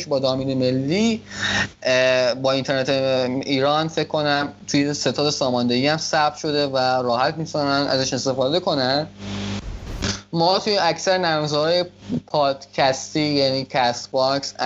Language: Persian